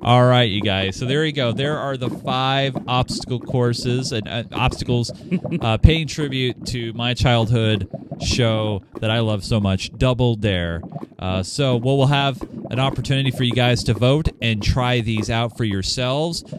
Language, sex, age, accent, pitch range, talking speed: English, male, 30-49, American, 105-135 Hz, 175 wpm